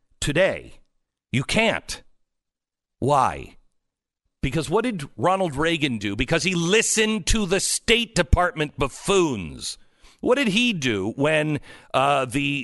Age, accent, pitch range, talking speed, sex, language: 50-69, American, 135-195 Hz, 120 wpm, male, English